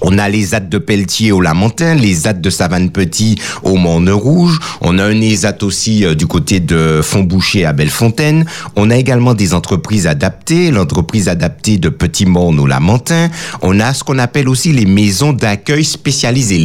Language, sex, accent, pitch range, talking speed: French, male, French, 85-130 Hz, 175 wpm